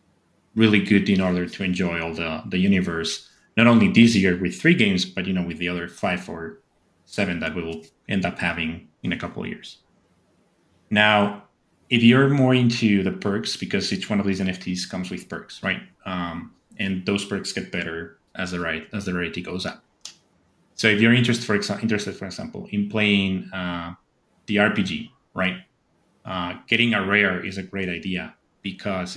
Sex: male